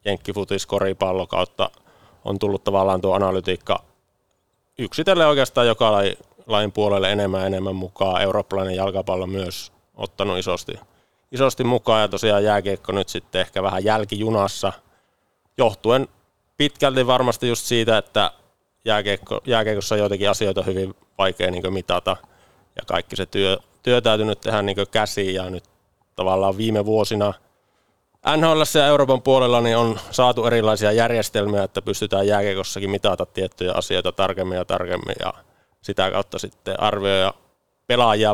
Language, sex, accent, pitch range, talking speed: Finnish, male, native, 95-110 Hz, 130 wpm